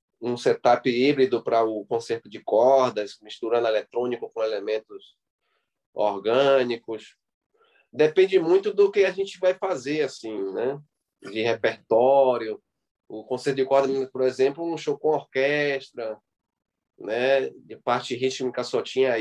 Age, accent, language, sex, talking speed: 20-39, Brazilian, Portuguese, male, 130 wpm